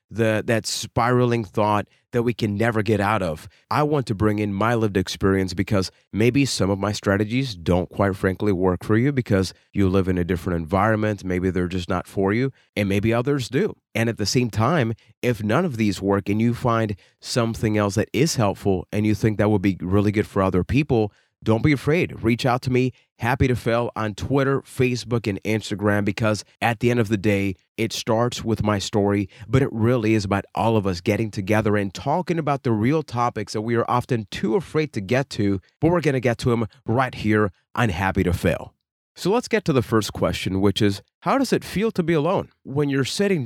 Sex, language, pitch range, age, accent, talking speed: male, English, 100-130 Hz, 30-49, American, 220 wpm